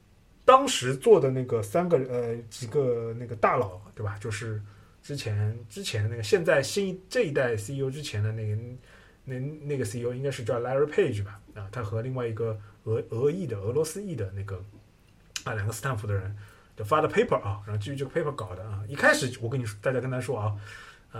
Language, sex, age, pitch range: Chinese, male, 20-39, 105-135 Hz